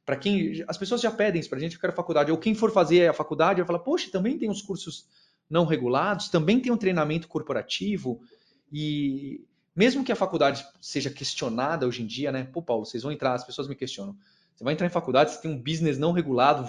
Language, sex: Portuguese, male